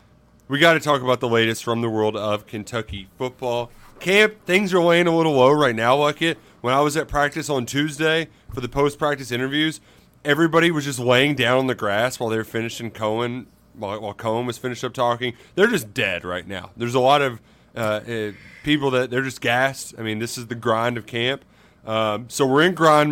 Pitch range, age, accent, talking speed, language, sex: 110-145 Hz, 30-49, American, 215 wpm, English, male